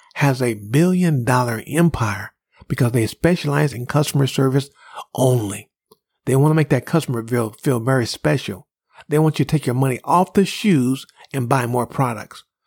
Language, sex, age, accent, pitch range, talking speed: English, male, 50-69, American, 120-165 Hz, 165 wpm